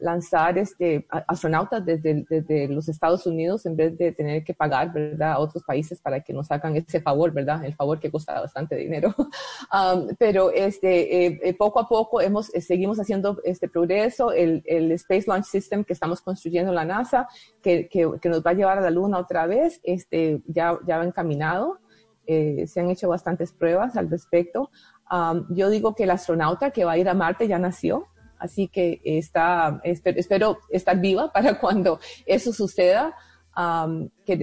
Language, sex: Spanish, female